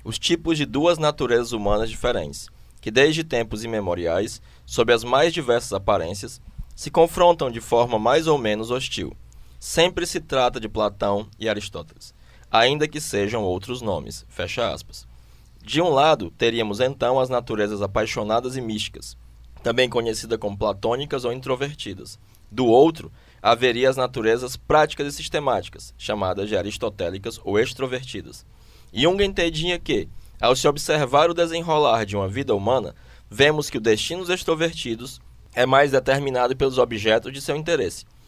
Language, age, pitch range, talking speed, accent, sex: Portuguese, 20-39, 105-145 Hz, 145 wpm, Brazilian, male